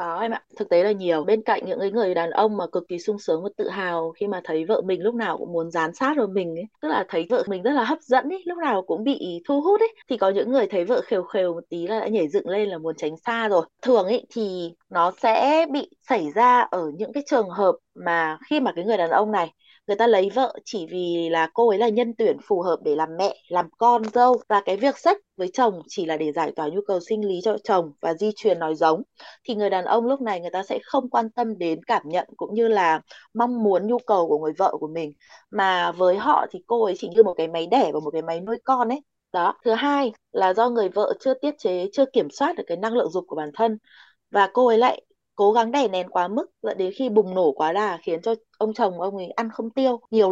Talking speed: 275 wpm